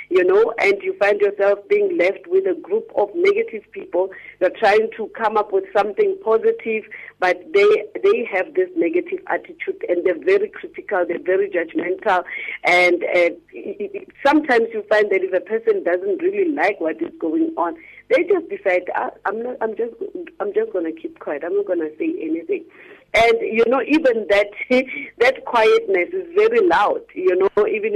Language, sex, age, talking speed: English, female, 50-69, 185 wpm